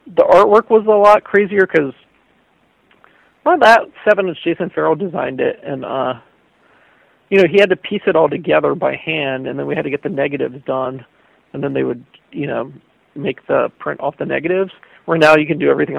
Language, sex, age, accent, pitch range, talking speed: English, male, 40-59, American, 145-195 Hz, 205 wpm